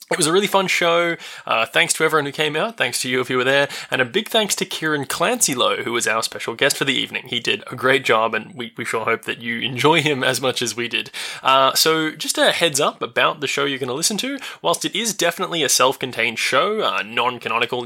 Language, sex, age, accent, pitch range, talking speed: English, male, 20-39, Australian, 125-165 Hz, 260 wpm